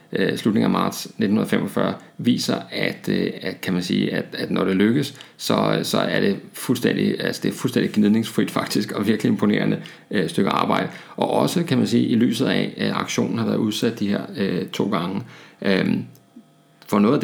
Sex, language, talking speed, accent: male, Danish, 185 wpm, native